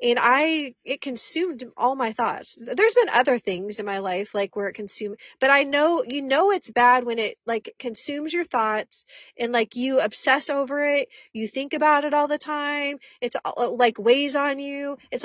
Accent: American